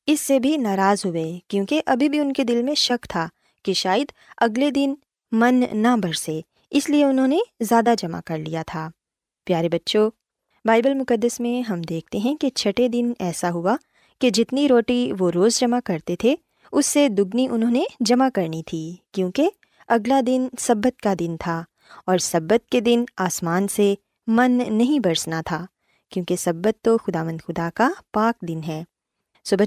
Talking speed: 175 wpm